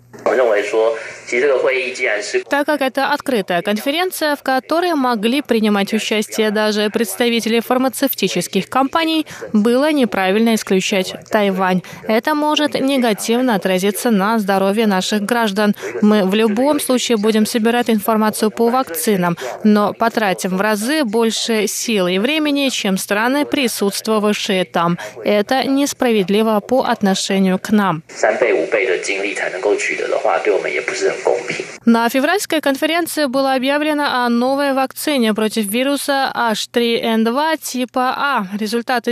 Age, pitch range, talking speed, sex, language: 20-39, 205-270 Hz, 105 wpm, female, Russian